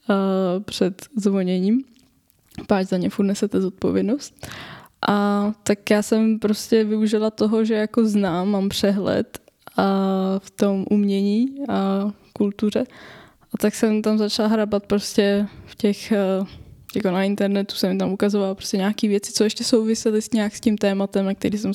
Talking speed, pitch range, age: 145 wpm, 190-215 Hz, 10-29